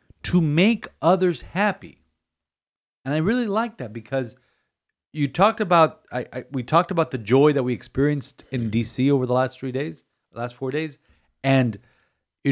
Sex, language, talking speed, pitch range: male, English, 170 wpm, 105-140 Hz